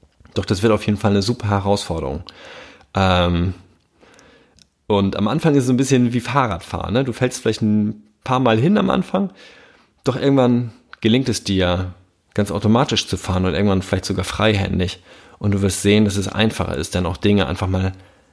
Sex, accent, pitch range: male, German, 95-115 Hz